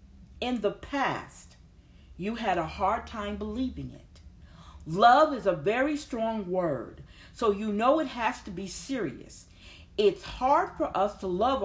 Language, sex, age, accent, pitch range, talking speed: English, female, 40-59, American, 185-275 Hz, 155 wpm